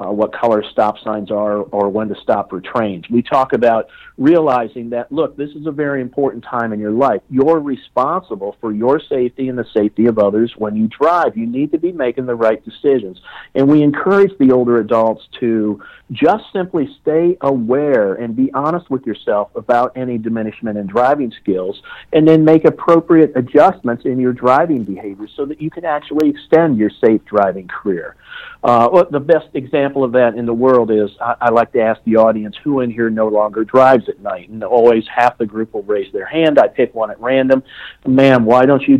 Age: 50-69